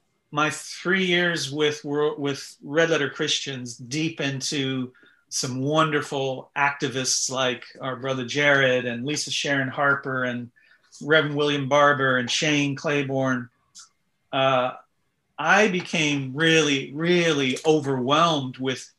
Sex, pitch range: male, 130-160 Hz